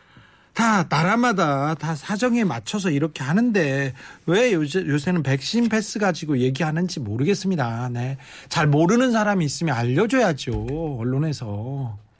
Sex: male